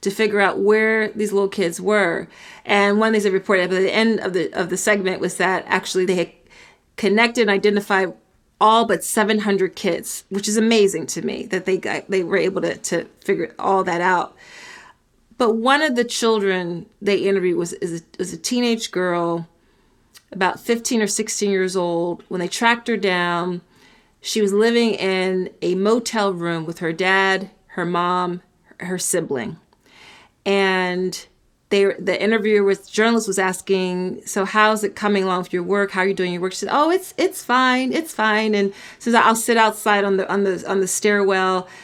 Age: 30-49